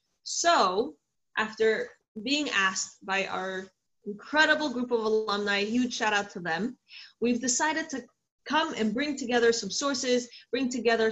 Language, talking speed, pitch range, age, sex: English, 140 wpm, 220-275 Hz, 20-39, female